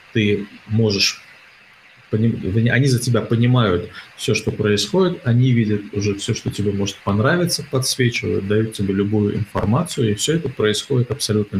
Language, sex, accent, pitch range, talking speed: Russian, male, native, 105-125 Hz, 140 wpm